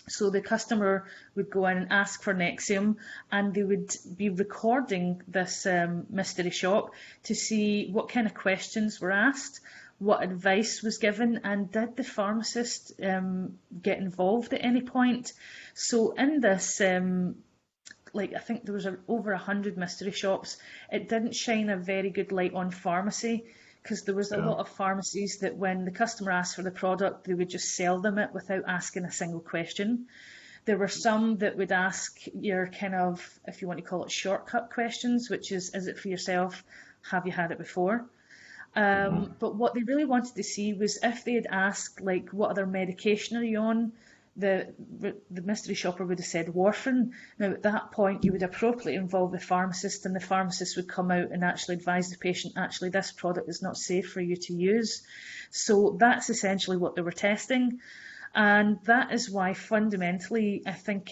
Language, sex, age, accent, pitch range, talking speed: English, female, 30-49, British, 185-220 Hz, 185 wpm